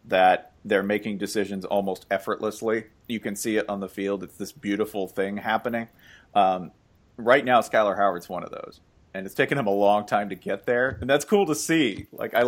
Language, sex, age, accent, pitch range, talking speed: English, male, 40-59, American, 100-150 Hz, 205 wpm